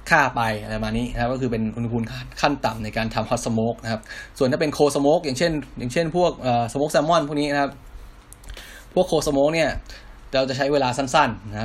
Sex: male